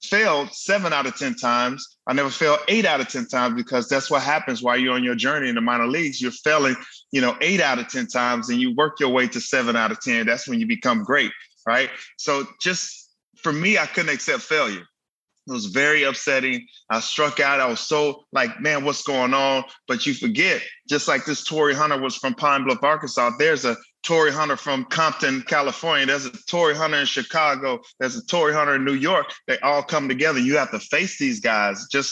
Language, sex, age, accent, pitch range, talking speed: English, male, 20-39, American, 125-170 Hz, 220 wpm